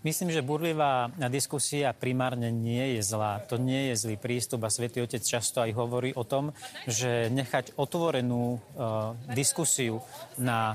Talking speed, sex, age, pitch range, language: 150 wpm, male, 30-49, 120-140 Hz, Slovak